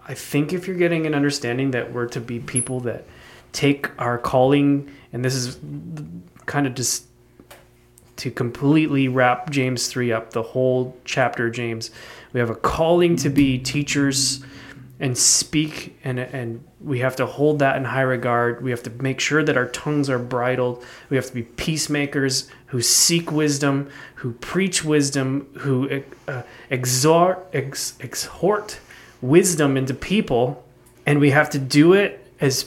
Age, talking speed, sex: 20-39, 160 wpm, male